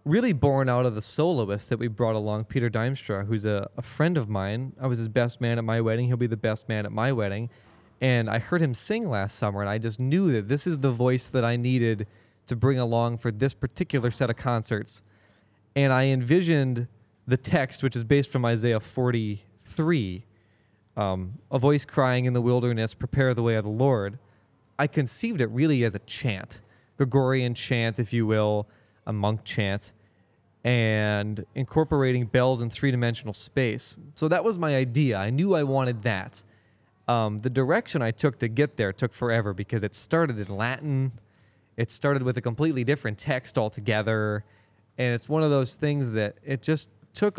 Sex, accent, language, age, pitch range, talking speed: male, American, English, 20-39, 110-135 Hz, 190 wpm